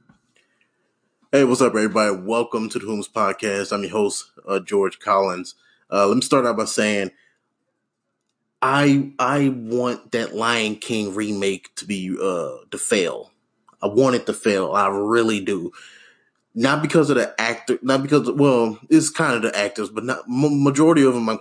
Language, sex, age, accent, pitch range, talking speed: English, male, 20-39, American, 100-125 Hz, 175 wpm